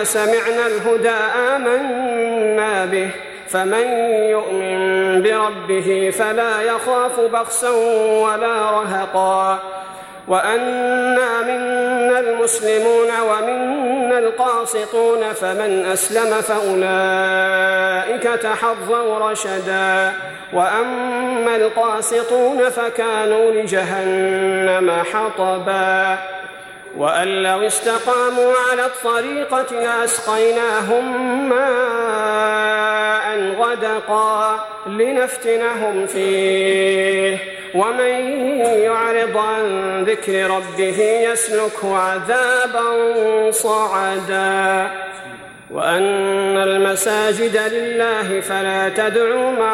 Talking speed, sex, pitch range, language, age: 65 wpm, male, 190-235 Hz, Arabic, 40-59